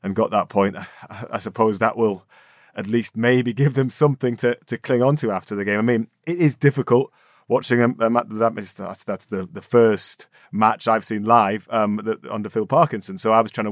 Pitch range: 105-120 Hz